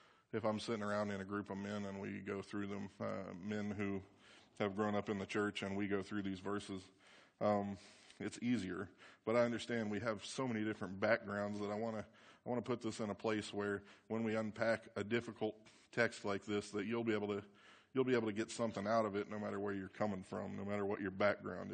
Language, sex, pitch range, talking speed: English, male, 105-115 Hz, 240 wpm